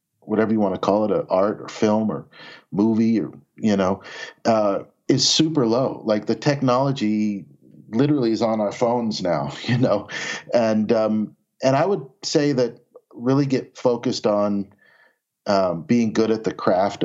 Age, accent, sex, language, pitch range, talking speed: 40-59, American, male, English, 100-120 Hz, 160 wpm